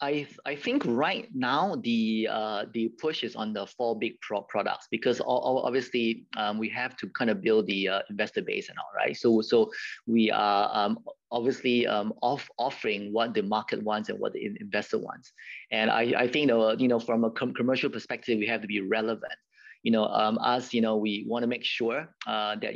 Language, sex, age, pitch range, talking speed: English, male, 30-49, 105-125 Hz, 215 wpm